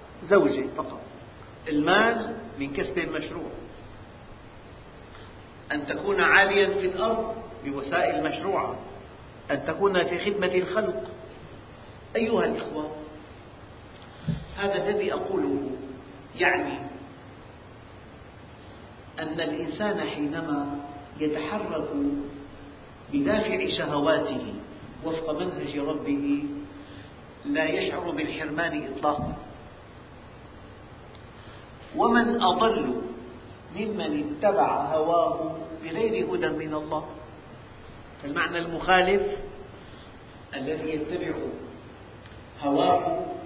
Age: 50-69